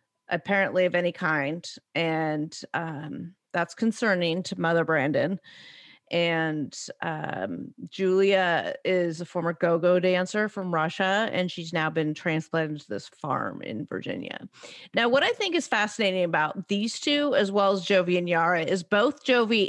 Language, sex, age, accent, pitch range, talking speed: English, female, 30-49, American, 170-215 Hz, 150 wpm